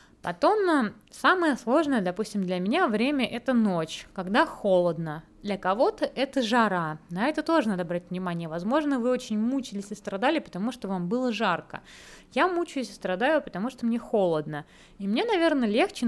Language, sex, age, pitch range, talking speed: Russian, female, 20-39, 195-260 Hz, 170 wpm